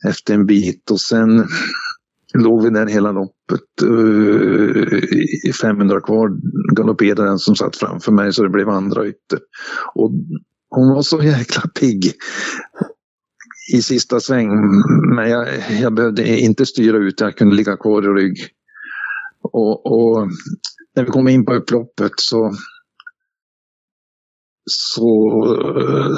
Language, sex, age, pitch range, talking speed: Swedish, male, 50-69, 105-135 Hz, 125 wpm